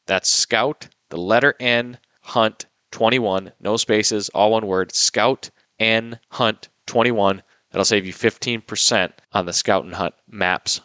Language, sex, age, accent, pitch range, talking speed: English, male, 20-39, American, 100-120 Hz, 135 wpm